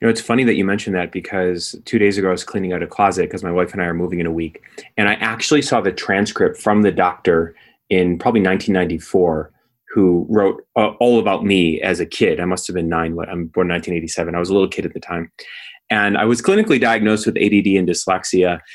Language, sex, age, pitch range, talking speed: English, male, 30-49, 90-105 Hz, 240 wpm